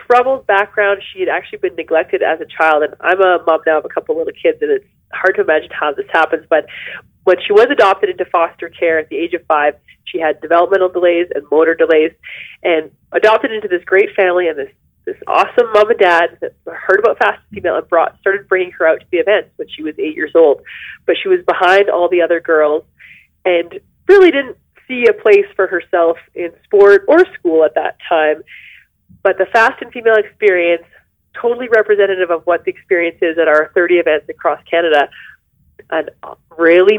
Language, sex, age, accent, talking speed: English, female, 30-49, American, 205 wpm